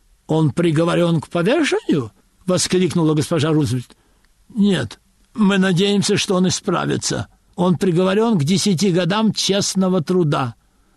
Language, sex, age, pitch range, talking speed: Russian, male, 60-79, 175-205 Hz, 110 wpm